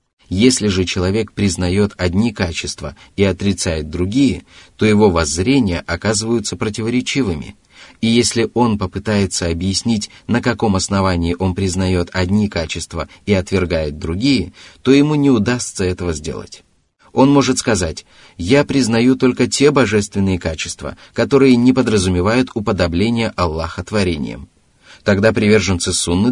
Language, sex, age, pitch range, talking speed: Russian, male, 30-49, 90-115 Hz, 120 wpm